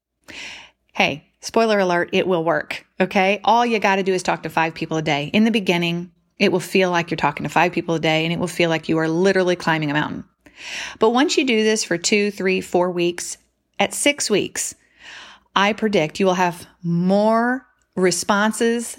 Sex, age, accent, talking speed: female, 30-49, American, 200 wpm